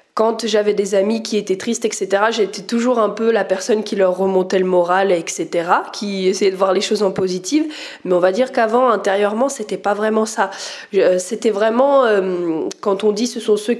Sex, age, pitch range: female, 20-39, 205-270 Hz